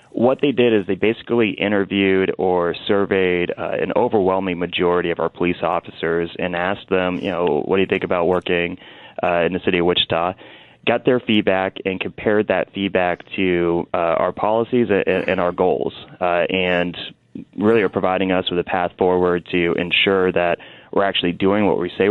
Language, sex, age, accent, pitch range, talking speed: English, male, 20-39, American, 90-100 Hz, 180 wpm